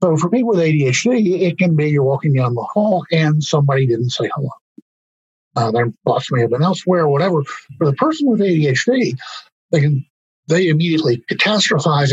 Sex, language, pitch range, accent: male, English, 125-165 Hz, American